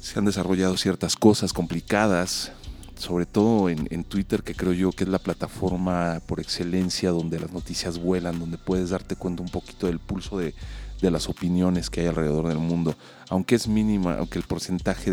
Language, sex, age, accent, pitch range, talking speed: Spanish, male, 40-59, Mexican, 80-95 Hz, 185 wpm